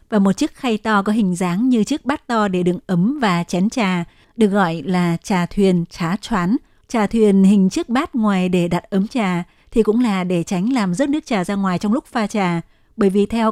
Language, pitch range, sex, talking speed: Vietnamese, 185-230 Hz, female, 235 wpm